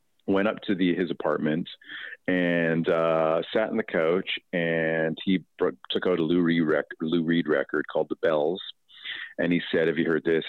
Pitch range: 80-95 Hz